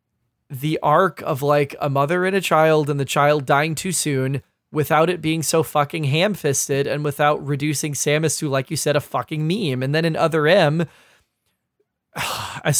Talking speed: 180 wpm